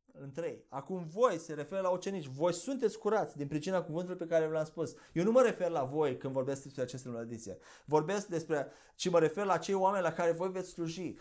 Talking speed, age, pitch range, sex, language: 220 wpm, 20-39, 140-180 Hz, male, Romanian